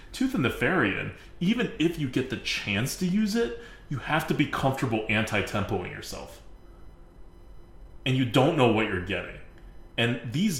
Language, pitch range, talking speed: English, 100-150 Hz, 160 wpm